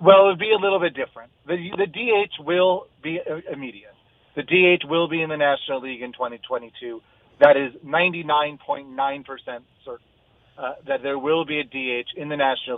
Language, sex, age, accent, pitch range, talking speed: English, male, 30-49, American, 130-170 Hz, 180 wpm